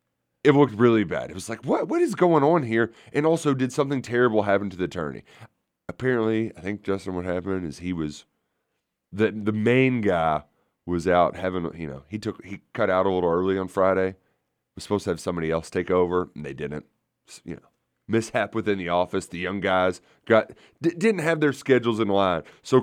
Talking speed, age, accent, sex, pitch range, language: 210 wpm, 30-49, American, male, 95-130 Hz, English